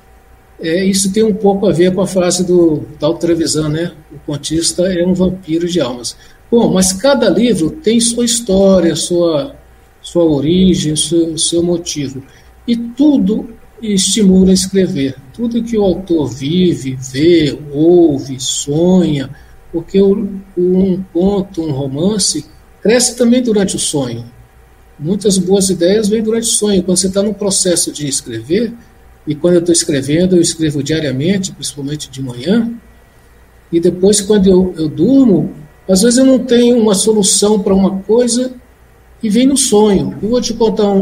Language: Portuguese